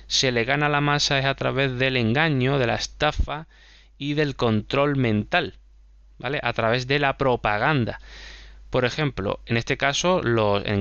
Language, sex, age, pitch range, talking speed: Spanish, male, 20-39, 110-145 Hz, 165 wpm